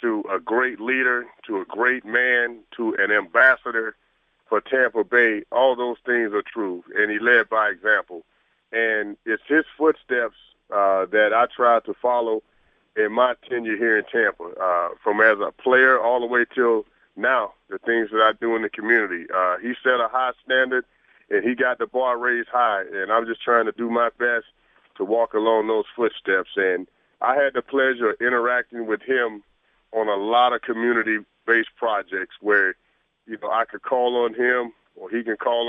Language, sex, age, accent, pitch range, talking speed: English, male, 40-59, American, 110-125 Hz, 185 wpm